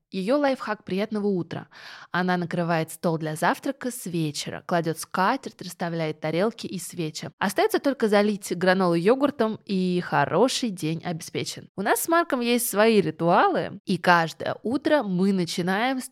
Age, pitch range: 20-39, 175-215 Hz